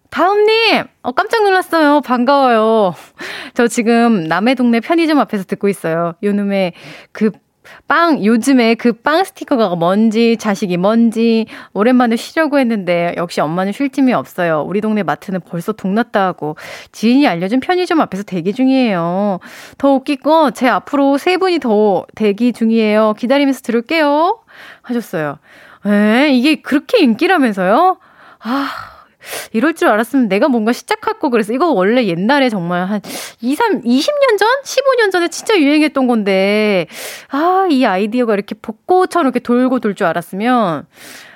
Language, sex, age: Korean, female, 20-39